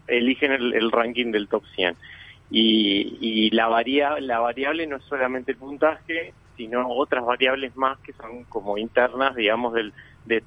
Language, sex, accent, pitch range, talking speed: Spanish, male, Argentinian, 115-135 Hz, 160 wpm